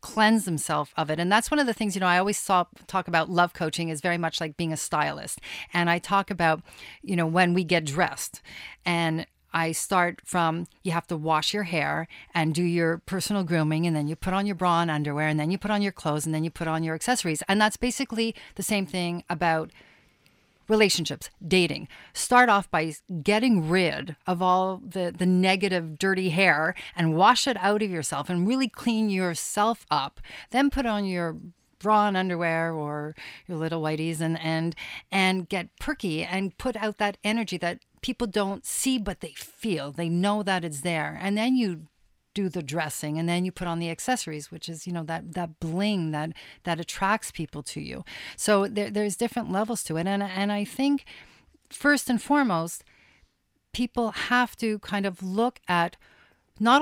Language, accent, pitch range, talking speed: English, American, 165-215 Hz, 195 wpm